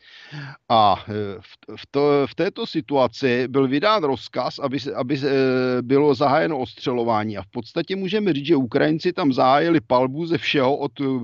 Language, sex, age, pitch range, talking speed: Czech, male, 50-69, 115-145 Hz, 155 wpm